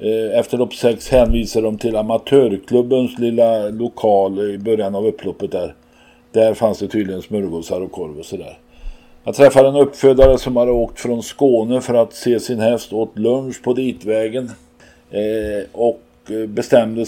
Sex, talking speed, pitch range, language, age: male, 160 wpm, 105-120 Hz, Swedish, 50-69